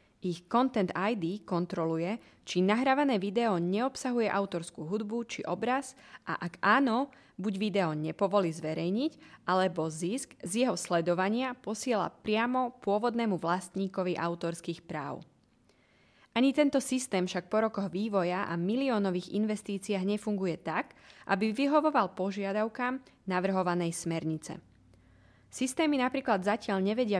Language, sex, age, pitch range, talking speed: Slovak, female, 20-39, 175-235 Hz, 115 wpm